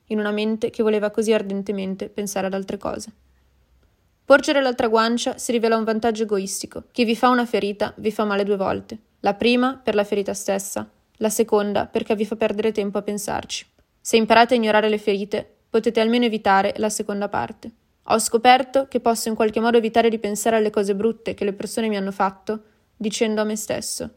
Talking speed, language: 195 wpm, Italian